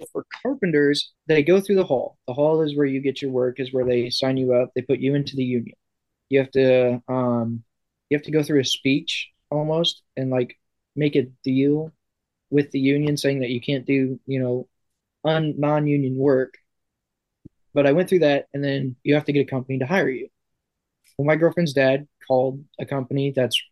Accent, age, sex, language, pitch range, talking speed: American, 20-39, male, English, 130-150 Hz, 200 wpm